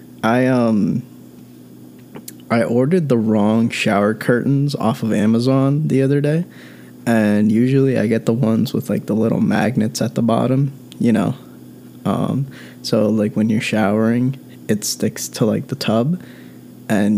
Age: 20-39